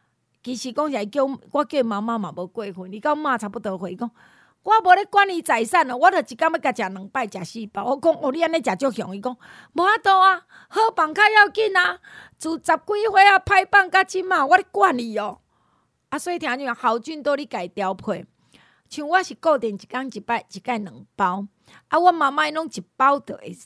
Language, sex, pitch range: Chinese, female, 225-320 Hz